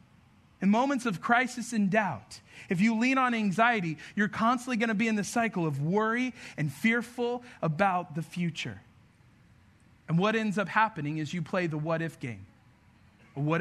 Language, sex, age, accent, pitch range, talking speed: English, male, 40-59, American, 155-235 Hz, 170 wpm